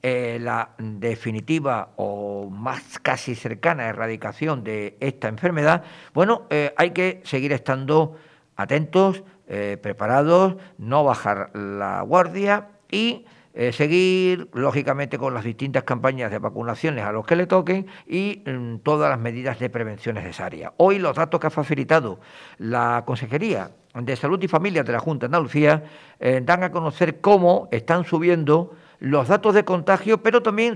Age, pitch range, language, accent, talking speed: 50-69, 125-185 Hz, Spanish, Spanish, 150 wpm